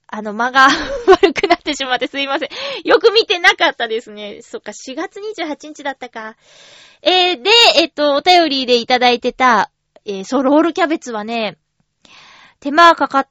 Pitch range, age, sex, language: 220-325 Hz, 20-39, female, Japanese